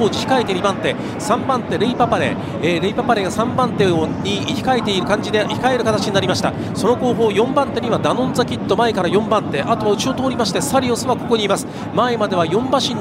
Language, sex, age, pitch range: Japanese, male, 40-59, 210-250 Hz